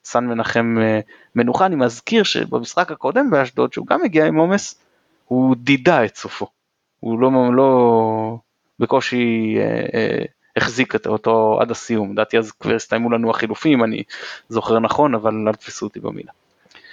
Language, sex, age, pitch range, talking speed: Hebrew, male, 20-39, 110-160 Hz, 150 wpm